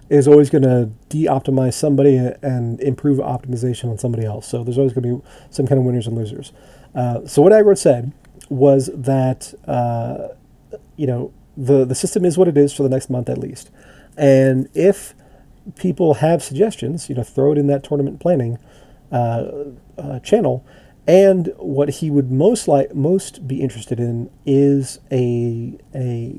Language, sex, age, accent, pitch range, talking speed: English, male, 40-59, American, 125-145 Hz, 175 wpm